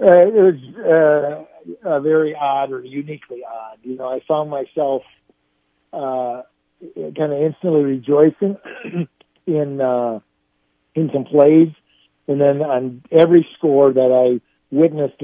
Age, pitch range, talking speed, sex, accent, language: 50-69, 125-150 Hz, 130 wpm, male, American, English